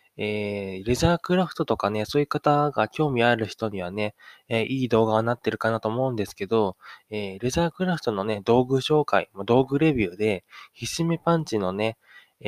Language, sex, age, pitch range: Japanese, male, 20-39, 100-130 Hz